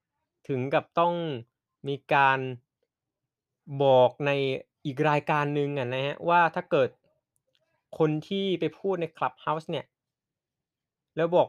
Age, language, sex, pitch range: 20-39, Thai, male, 130-170 Hz